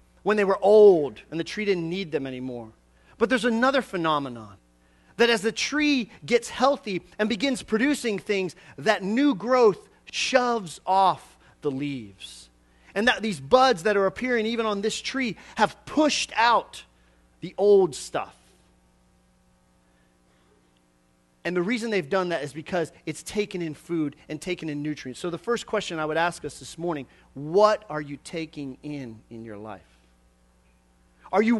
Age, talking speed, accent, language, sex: 30-49, 160 wpm, American, English, male